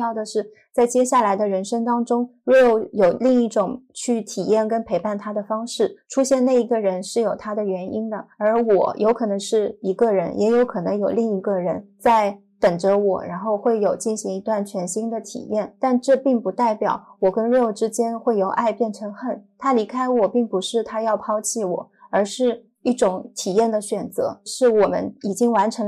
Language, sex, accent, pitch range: Chinese, female, native, 205-240 Hz